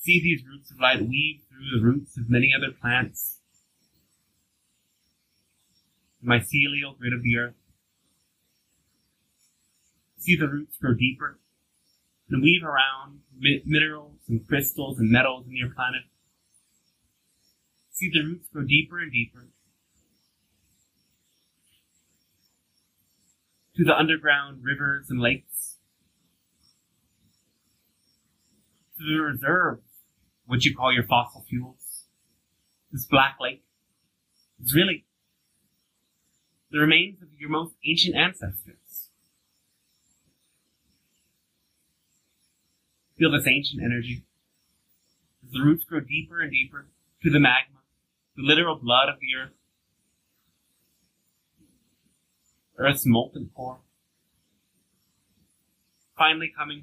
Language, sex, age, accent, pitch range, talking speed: English, male, 30-49, American, 120-150 Hz, 100 wpm